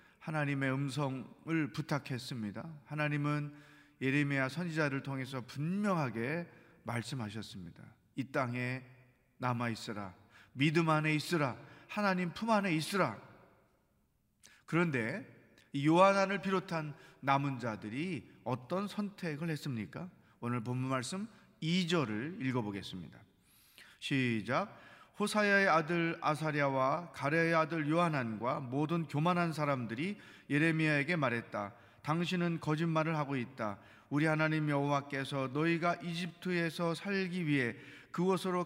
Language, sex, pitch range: Korean, male, 130-170 Hz